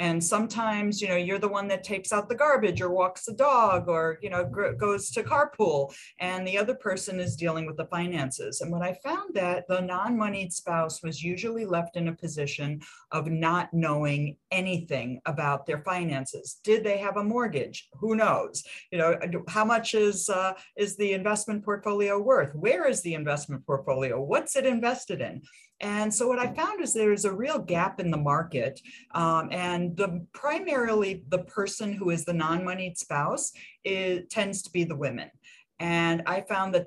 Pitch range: 155-200 Hz